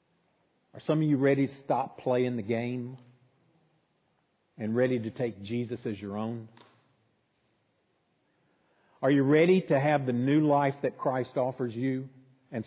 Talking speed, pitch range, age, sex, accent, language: 145 wpm, 115-150 Hz, 50-69, male, American, English